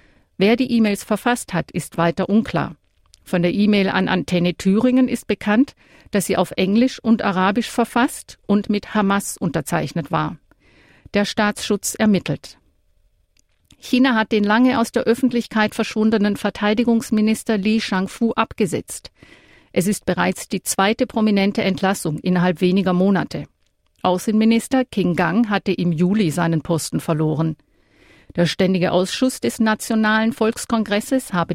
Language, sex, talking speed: German, female, 130 wpm